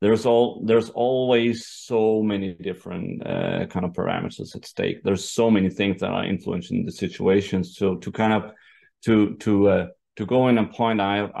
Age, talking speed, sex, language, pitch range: 30-49, 185 wpm, male, English, 95-110 Hz